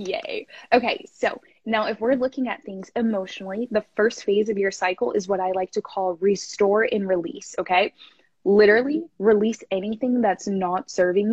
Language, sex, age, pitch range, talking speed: English, female, 20-39, 190-235 Hz, 170 wpm